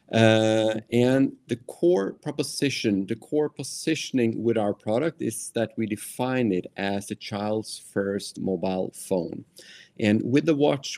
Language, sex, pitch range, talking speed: Danish, male, 95-125 Hz, 140 wpm